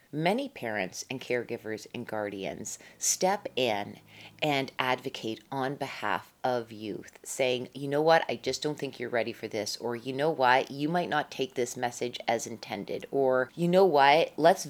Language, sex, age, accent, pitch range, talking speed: English, female, 30-49, American, 125-160 Hz, 175 wpm